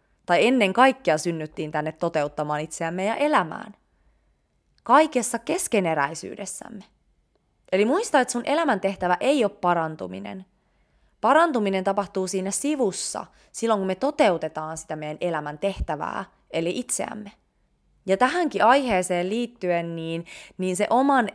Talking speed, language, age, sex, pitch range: 110 wpm, Finnish, 20-39, female, 165-230 Hz